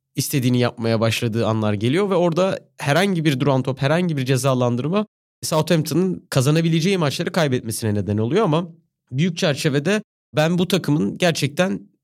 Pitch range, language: 120-165 Hz, Turkish